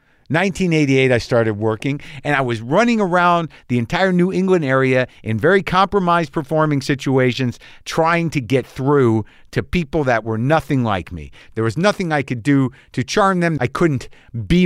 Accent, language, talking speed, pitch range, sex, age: American, English, 170 wpm, 125-185 Hz, male, 50-69